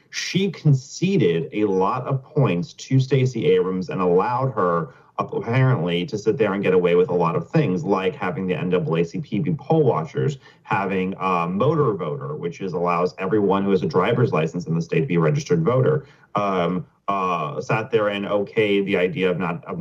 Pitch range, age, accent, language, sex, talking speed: 95-150 Hz, 30-49, American, English, male, 185 wpm